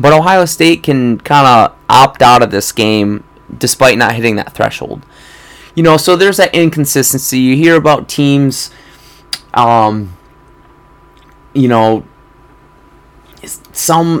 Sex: male